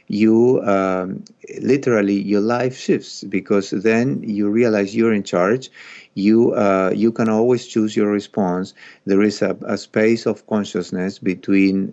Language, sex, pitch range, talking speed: English, male, 95-110 Hz, 145 wpm